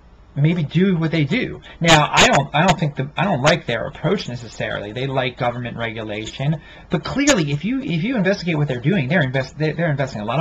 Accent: American